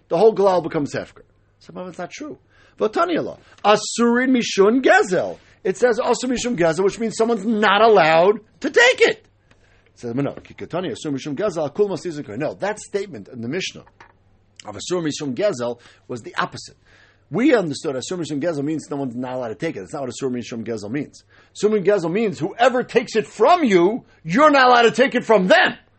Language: English